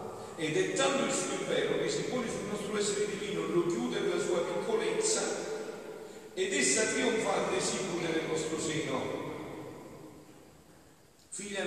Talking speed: 145 wpm